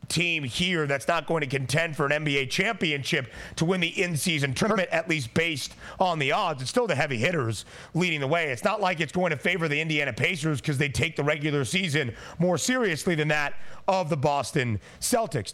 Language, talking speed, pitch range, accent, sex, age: English, 210 wpm, 145-190 Hz, American, male, 30-49